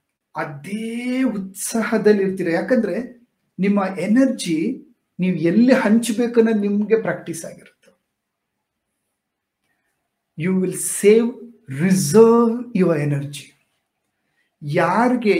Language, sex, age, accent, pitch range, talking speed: Kannada, male, 50-69, native, 160-220 Hz, 75 wpm